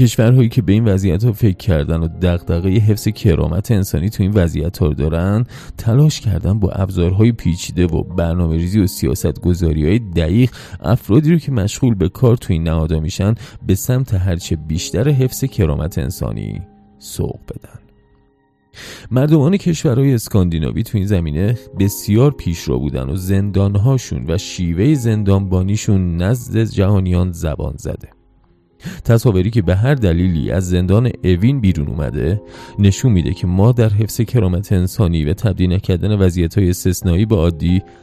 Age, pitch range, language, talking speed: 30-49, 85-110 Hz, Persian, 145 wpm